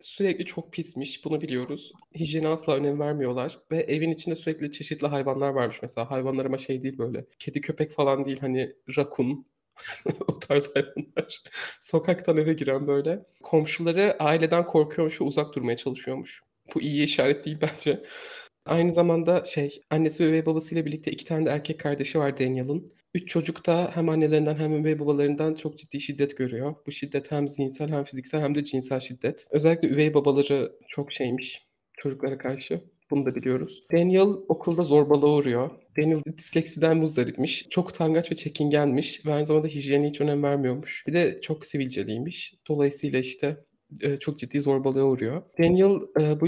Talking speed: 160 wpm